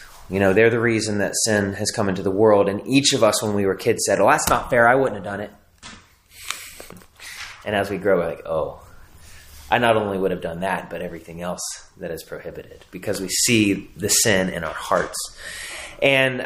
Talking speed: 215 wpm